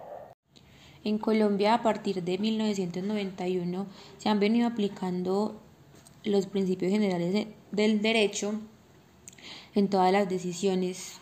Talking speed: 100 wpm